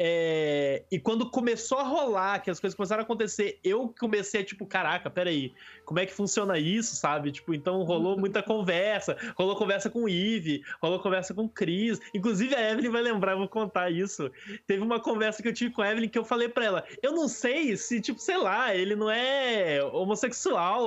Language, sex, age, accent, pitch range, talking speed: Portuguese, male, 20-39, Brazilian, 170-220 Hz, 210 wpm